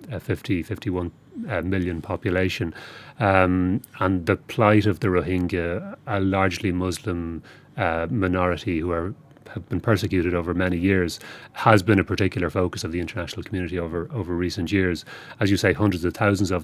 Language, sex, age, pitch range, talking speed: English, male, 30-49, 85-105 Hz, 160 wpm